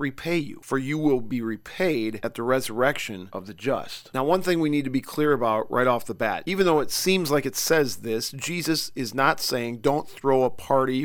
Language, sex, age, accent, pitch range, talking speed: English, male, 40-59, American, 125-150 Hz, 230 wpm